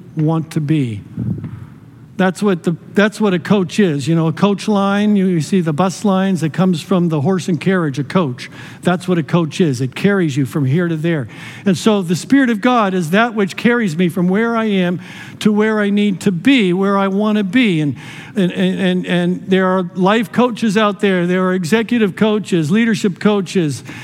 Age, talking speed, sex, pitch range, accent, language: 50-69, 210 wpm, male, 175-215 Hz, American, English